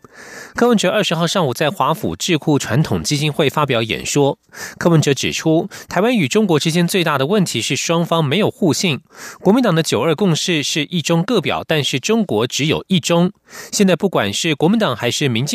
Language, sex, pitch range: German, male, 140-195 Hz